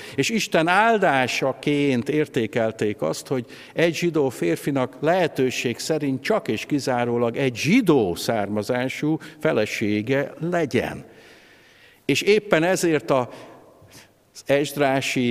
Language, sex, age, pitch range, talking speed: Hungarian, male, 50-69, 115-150 Hz, 90 wpm